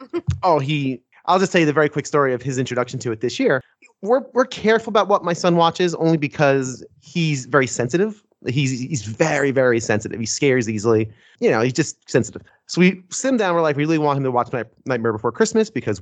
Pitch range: 120-165 Hz